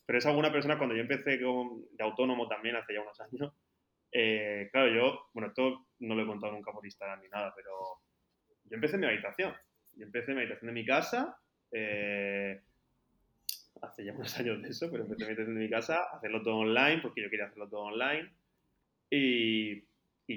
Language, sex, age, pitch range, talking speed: Spanish, male, 20-39, 105-130 Hz, 205 wpm